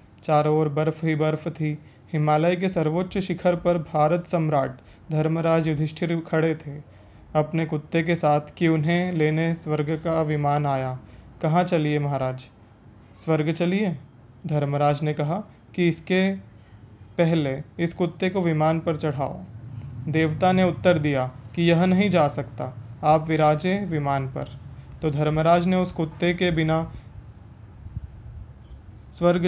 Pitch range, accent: 140-165 Hz, native